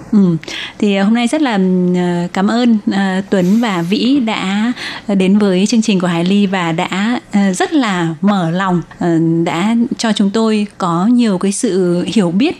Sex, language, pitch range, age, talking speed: female, Vietnamese, 180-230 Hz, 20-39, 160 wpm